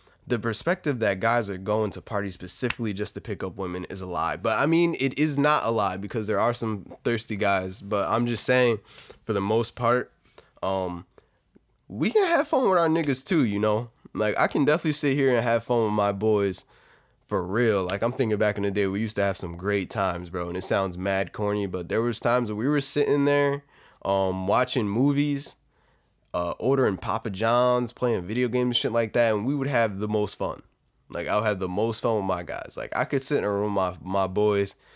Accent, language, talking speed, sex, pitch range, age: American, English, 230 wpm, male, 100-125 Hz, 20-39